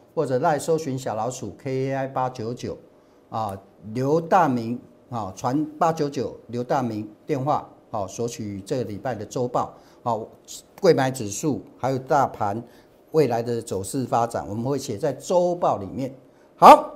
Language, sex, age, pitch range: Chinese, male, 50-69, 120-180 Hz